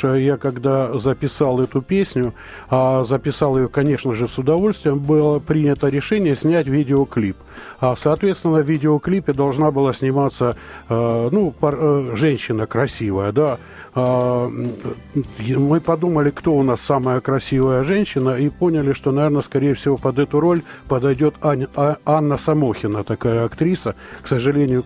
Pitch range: 125-155 Hz